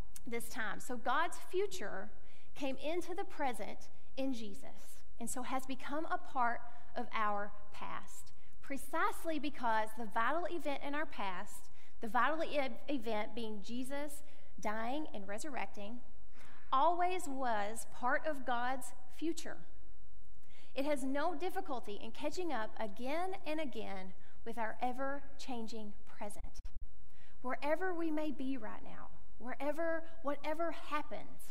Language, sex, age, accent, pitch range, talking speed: English, female, 30-49, American, 240-315 Hz, 130 wpm